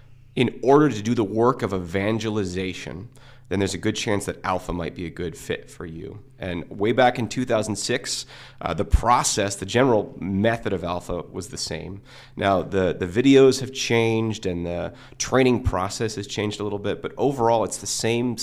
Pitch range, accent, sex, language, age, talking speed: 95-130 Hz, American, male, English, 30-49, 190 wpm